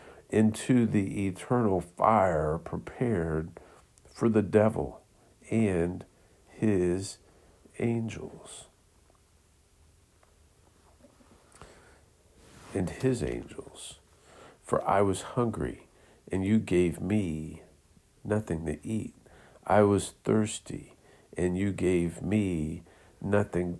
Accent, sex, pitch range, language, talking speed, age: American, male, 85-105 Hz, English, 85 wpm, 50-69